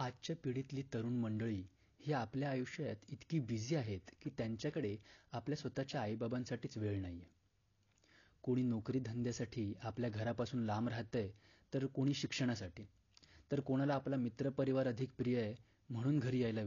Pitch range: 100-130 Hz